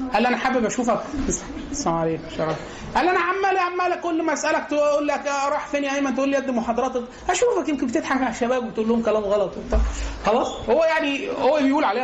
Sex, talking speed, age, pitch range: male, 200 wpm, 30-49, 175-255 Hz